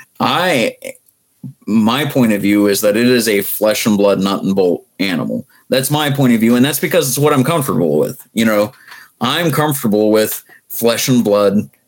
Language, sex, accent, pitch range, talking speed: English, male, American, 105-130 Hz, 190 wpm